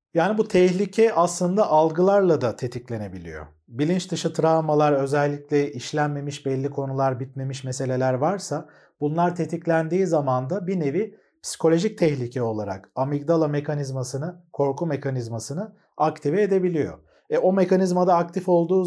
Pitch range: 135-180 Hz